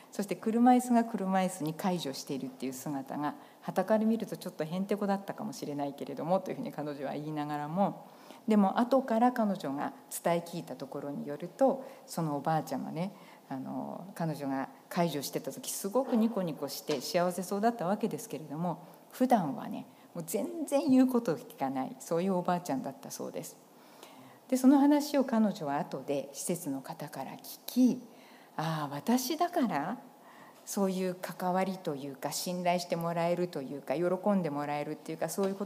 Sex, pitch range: female, 150-220 Hz